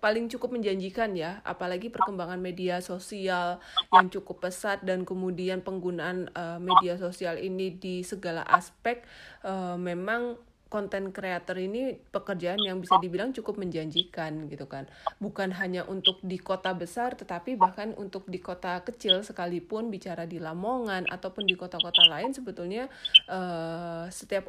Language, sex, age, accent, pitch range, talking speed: Indonesian, female, 30-49, native, 180-215 Hz, 140 wpm